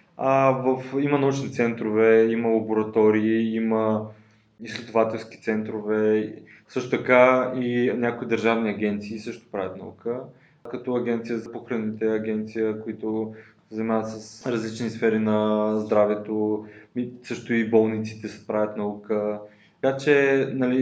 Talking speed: 115 wpm